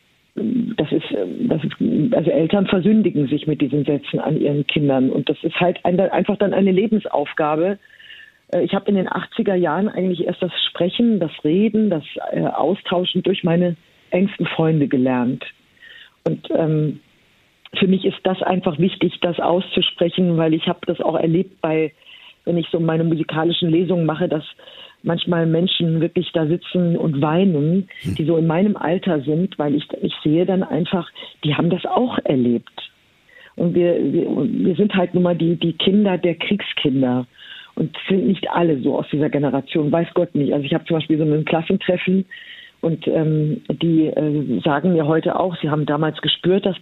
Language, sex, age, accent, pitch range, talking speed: German, female, 50-69, German, 160-190 Hz, 175 wpm